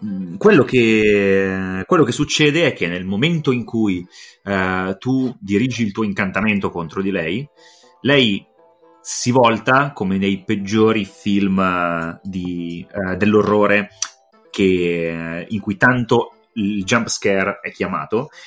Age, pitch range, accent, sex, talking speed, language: 30-49, 95-130 Hz, native, male, 135 wpm, Italian